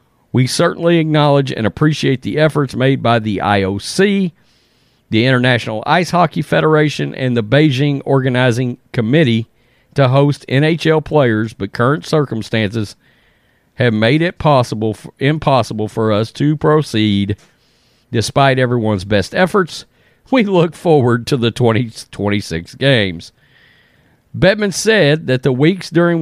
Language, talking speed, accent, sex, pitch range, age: English, 125 wpm, American, male, 115-155 Hz, 40-59